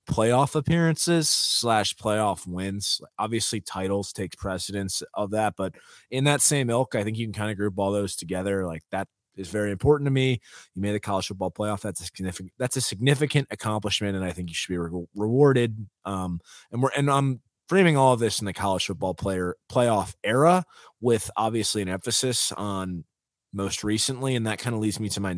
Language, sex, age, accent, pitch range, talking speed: English, male, 20-39, American, 100-125 Hz, 200 wpm